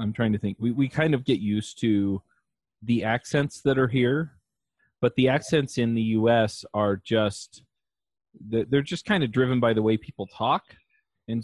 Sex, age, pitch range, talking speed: male, 30-49, 100-115 Hz, 190 wpm